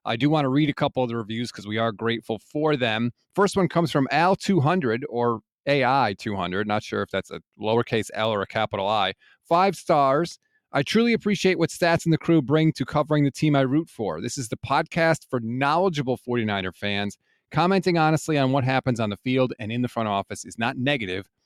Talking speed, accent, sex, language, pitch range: 215 wpm, American, male, English, 115-160 Hz